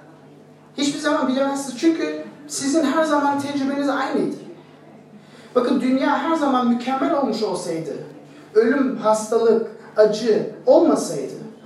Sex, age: male, 40-59